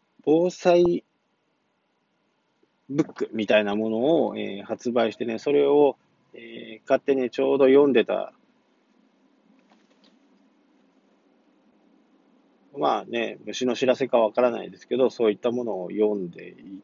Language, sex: Japanese, male